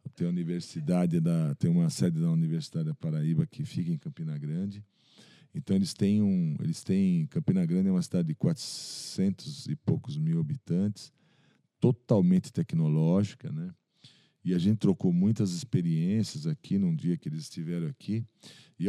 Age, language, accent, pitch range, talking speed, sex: 50-69, Portuguese, Brazilian, 110-170 Hz, 160 wpm, male